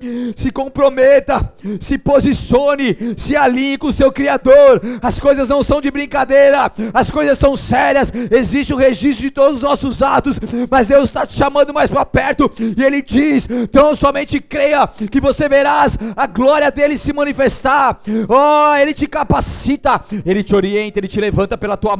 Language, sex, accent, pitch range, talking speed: Portuguese, male, Brazilian, 225-275 Hz, 165 wpm